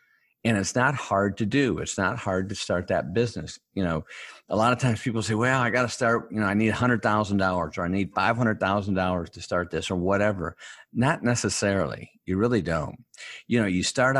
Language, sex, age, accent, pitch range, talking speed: English, male, 50-69, American, 95-120 Hz, 220 wpm